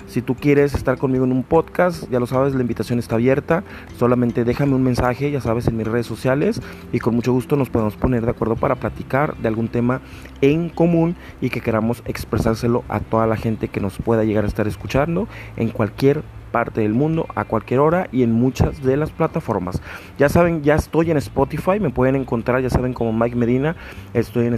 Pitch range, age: 110-140 Hz, 30-49